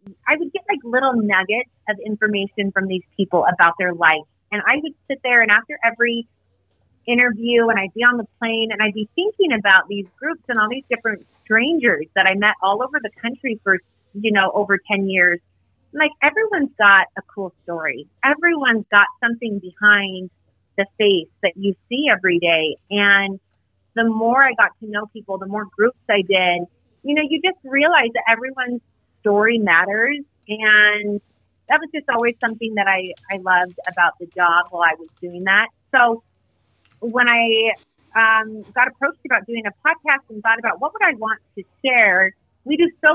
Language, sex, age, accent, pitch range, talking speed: English, female, 30-49, American, 195-245 Hz, 185 wpm